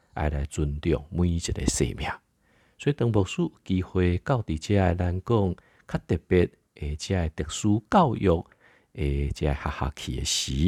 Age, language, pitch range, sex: 50-69, Chinese, 75-100 Hz, male